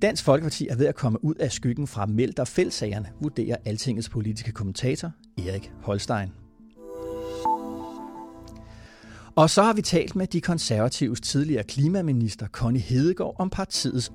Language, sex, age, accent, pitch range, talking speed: English, male, 30-49, Danish, 110-155 Hz, 140 wpm